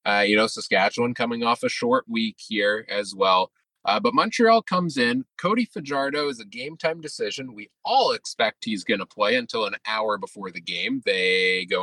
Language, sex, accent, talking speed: English, male, American, 200 wpm